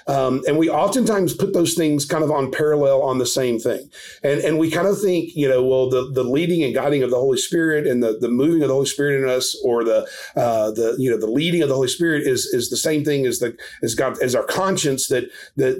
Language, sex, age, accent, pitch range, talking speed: English, male, 40-59, American, 130-170 Hz, 260 wpm